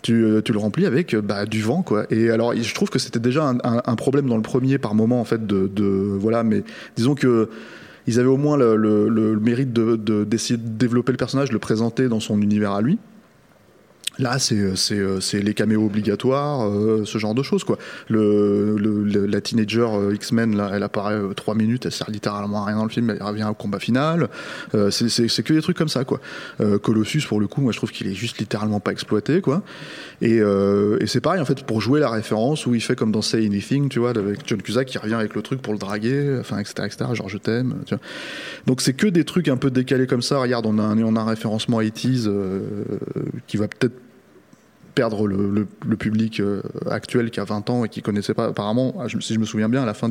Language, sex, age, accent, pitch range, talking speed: French, male, 20-39, French, 105-125 Hz, 240 wpm